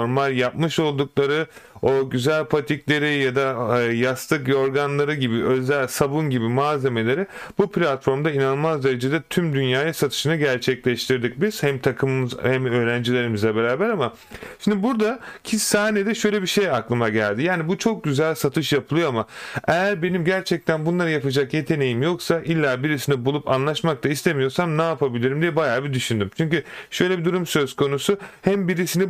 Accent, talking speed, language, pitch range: native, 150 wpm, Turkish, 135-175 Hz